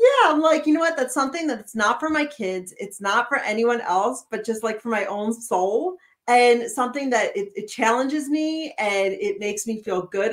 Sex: female